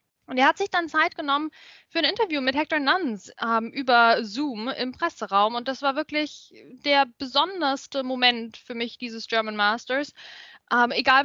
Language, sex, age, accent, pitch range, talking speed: German, female, 10-29, German, 235-285 Hz, 170 wpm